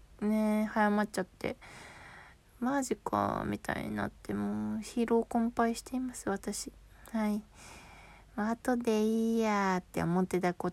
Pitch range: 180-230 Hz